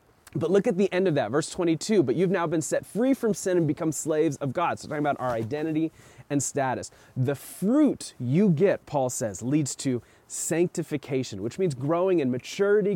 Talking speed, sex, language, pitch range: 205 wpm, male, English, 125-170 Hz